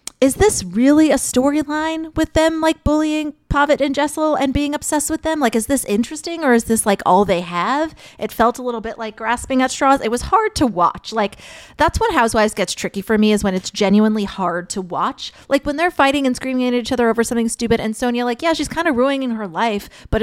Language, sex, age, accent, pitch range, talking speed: English, female, 30-49, American, 195-275 Hz, 235 wpm